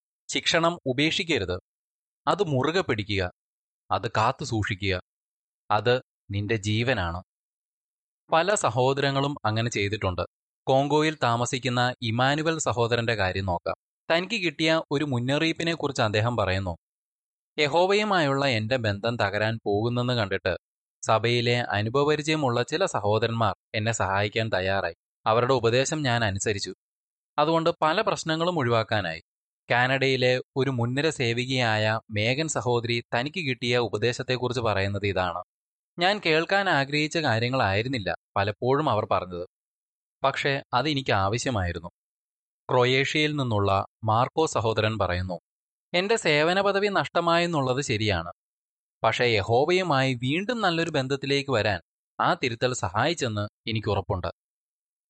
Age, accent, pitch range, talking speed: 20-39, native, 105-145 Hz, 95 wpm